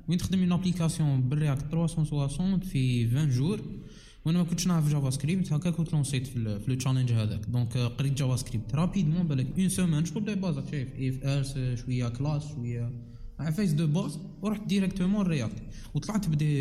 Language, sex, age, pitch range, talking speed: Arabic, male, 20-39, 130-165 Hz, 170 wpm